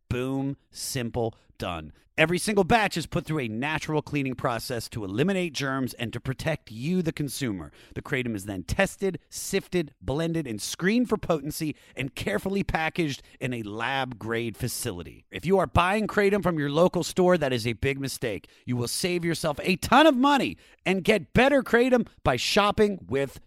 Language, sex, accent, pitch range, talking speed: English, male, American, 120-190 Hz, 175 wpm